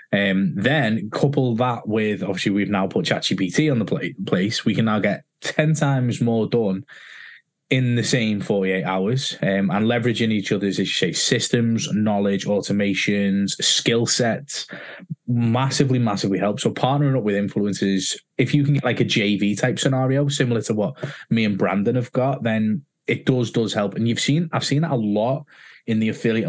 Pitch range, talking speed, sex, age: 100-130 Hz, 185 wpm, male, 20-39